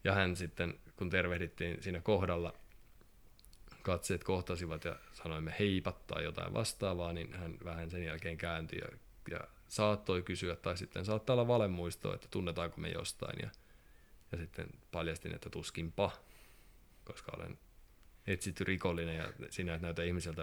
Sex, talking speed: male, 140 wpm